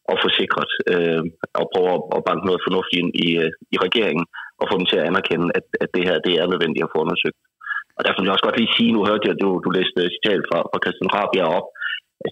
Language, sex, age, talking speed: Danish, male, 30-49, 250 wpm